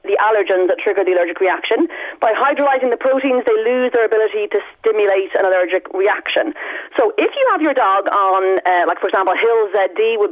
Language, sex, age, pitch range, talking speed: English, female, 30-49, 195-310 Hz, 200 wpm